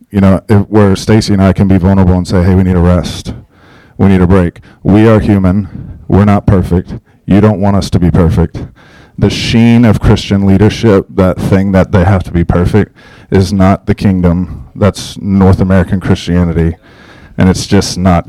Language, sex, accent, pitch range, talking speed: English, male, American, 90-105 Hz, 195 wpm